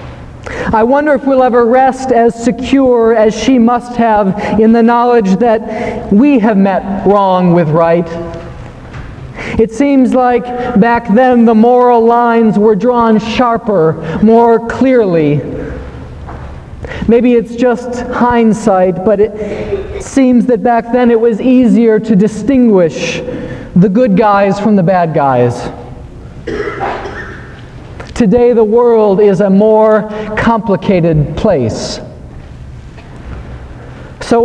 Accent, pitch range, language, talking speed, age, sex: American, 200-240 Hz, English, 115 wpm, 40-59, male